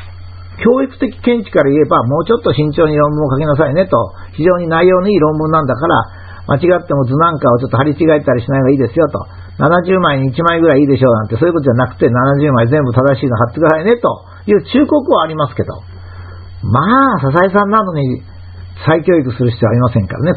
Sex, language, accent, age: male, Japanese, native, 50-69